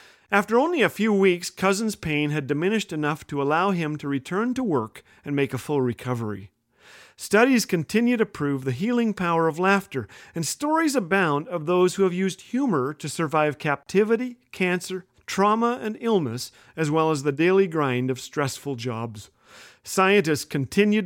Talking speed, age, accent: 165 wpm, 40-59, American